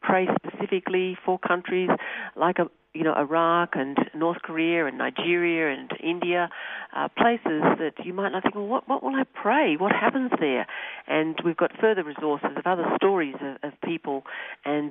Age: 50-69